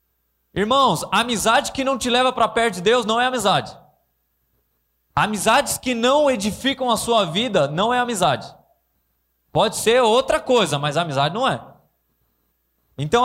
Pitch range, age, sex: 150-230 Hz, 20-39, male